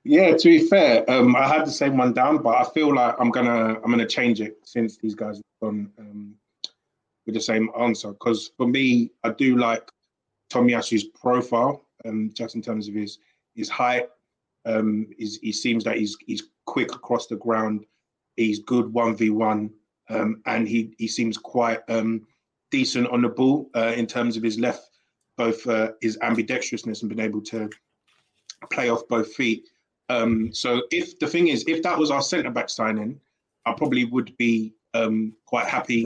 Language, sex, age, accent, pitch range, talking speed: English, male, 20-39, British, 110-120 Hz, 180 wpm